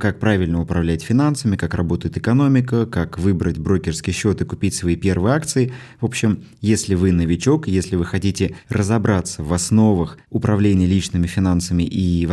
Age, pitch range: 20-39, 90-115 Hz